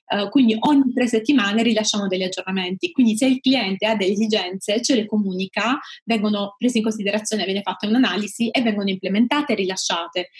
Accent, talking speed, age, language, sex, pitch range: native, 165 wpm, 20-39, Italian, female, 200-235 Hz